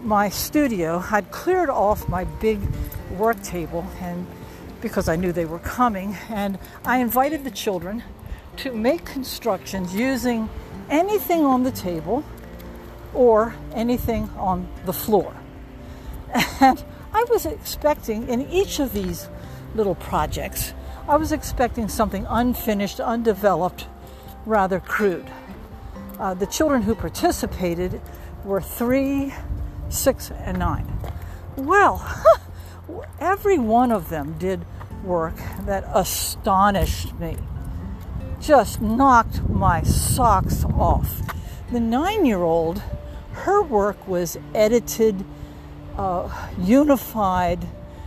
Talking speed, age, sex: 105 wpm, 60-79, female